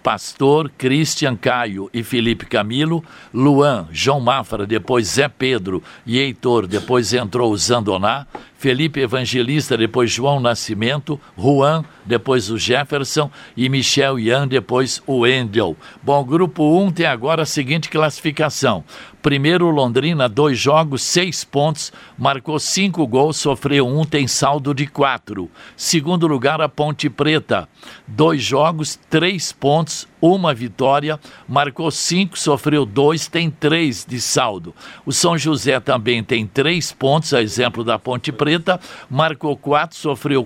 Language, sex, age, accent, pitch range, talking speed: Portuguese, male, 60-79, Brazilian, 130-155 Hz, 135 wpm